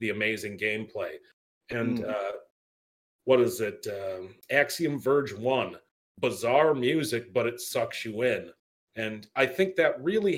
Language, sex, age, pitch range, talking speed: English, male, 40-59, 110-135 Hz, 140 wpm